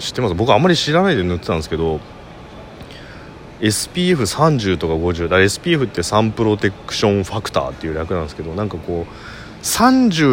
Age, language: 30-49, Japanese